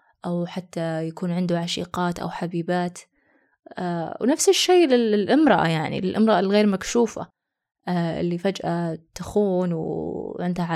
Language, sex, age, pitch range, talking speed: Arabic, female, 20-39, 180-220 Hz, 100 wpm